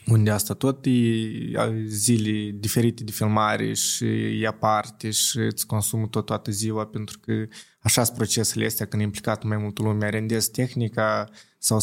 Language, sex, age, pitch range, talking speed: Romanian, male, 20-39, 105-130 Hz, 160 wpm